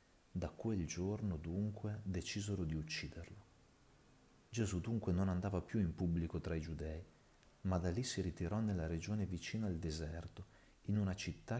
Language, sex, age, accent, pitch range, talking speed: Italian, male, 40-59, native, 85-105 Hz, 155 wpm